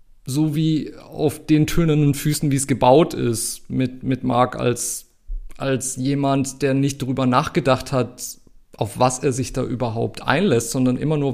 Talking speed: 165 wpm